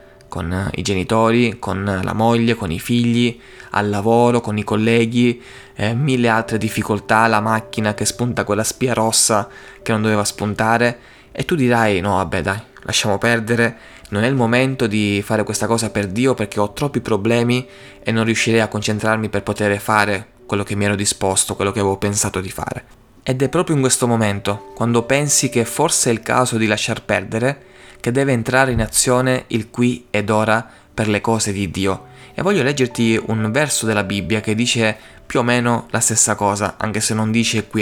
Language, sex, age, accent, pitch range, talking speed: Italian, male, 20-39, native, 105-120 Hz, 190 wpm